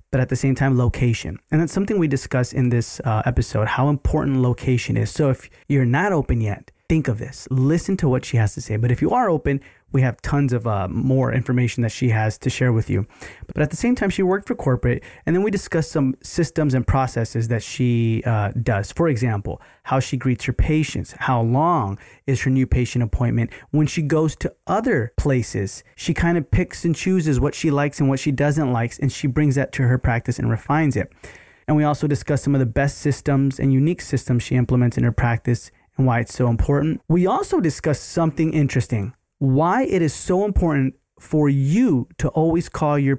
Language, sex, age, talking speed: English, male, 30-49, 220 wpm